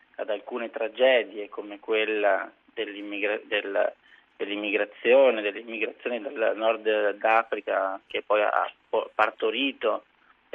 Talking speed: 85 wpm